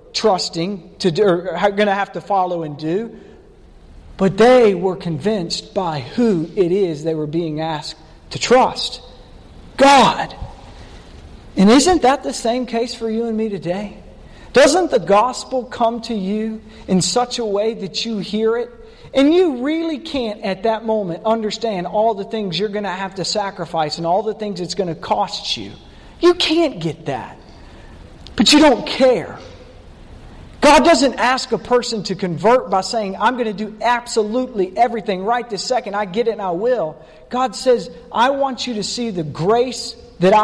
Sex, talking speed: male, 175 wpm